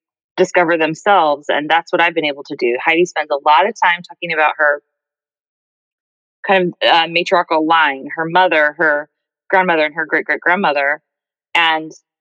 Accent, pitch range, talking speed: American, 150-185 Hz, 155 wpm